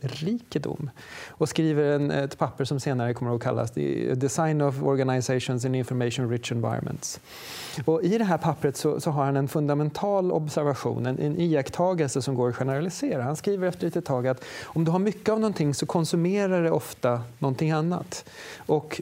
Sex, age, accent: male, 30-49, native